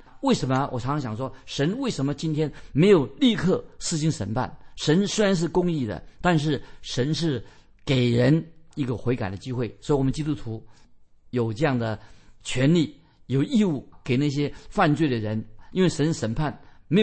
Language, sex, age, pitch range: Chinese, male, 50-69, 115-155 Hz